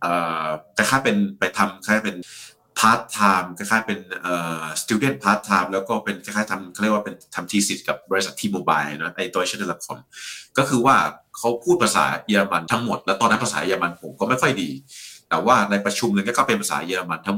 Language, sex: Thai, male